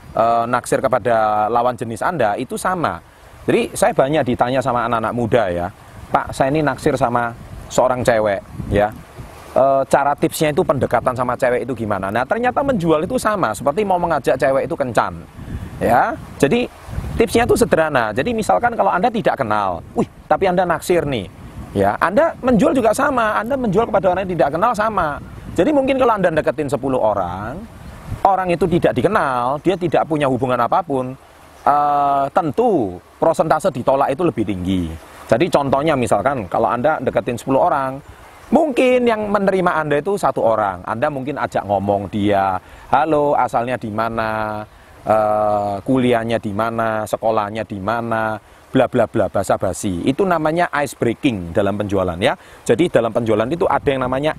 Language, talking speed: Indonesian, 160 wpm